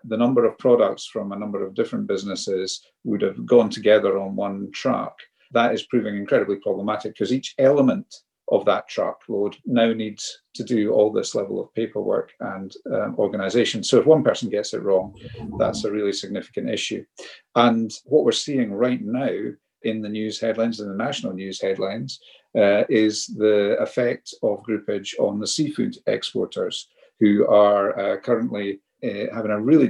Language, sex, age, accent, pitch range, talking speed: English, male, 50-69, British, 100-140 Hz, 170 wpm